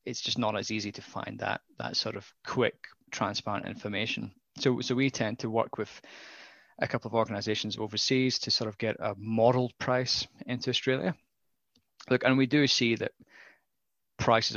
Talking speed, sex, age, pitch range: 175 wpm, male, 20-39, 105-125 Hz